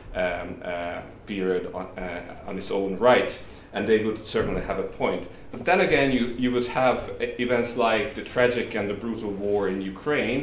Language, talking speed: English, 190 wpm